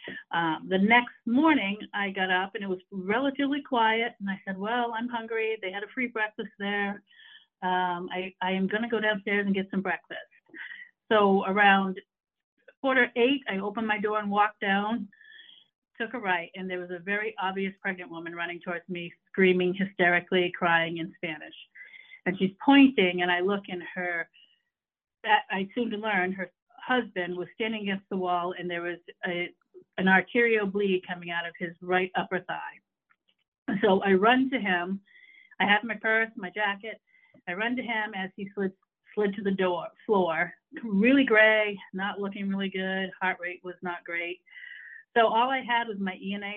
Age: 50-69